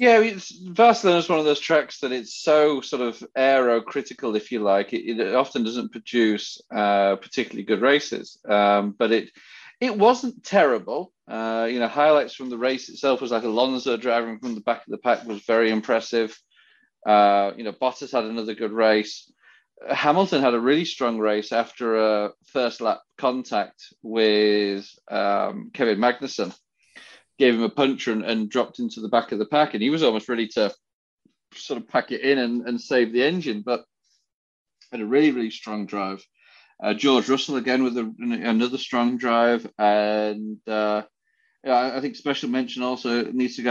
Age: 30-49